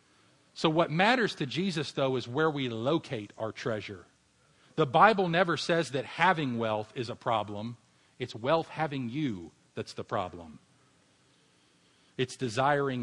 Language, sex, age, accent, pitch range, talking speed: English, male, 40-59, American, 125-170 Hz, 145 wpm